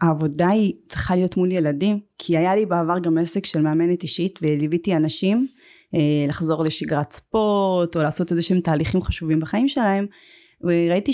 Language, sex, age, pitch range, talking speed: Hebrew, female, 20-39, 165-195 Hz, 155 wpm